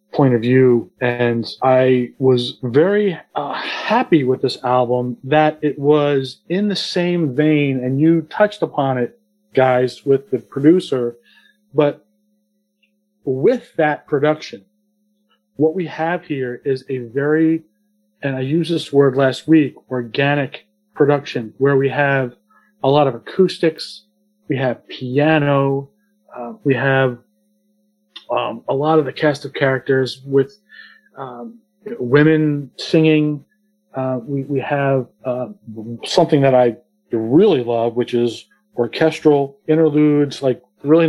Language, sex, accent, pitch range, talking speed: English, male, American, 130-160 Hz, 130 wpm